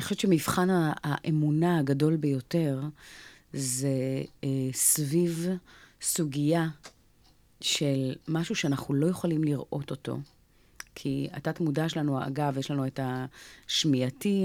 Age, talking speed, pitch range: 30-49, 110 wpm, 140-175 Hz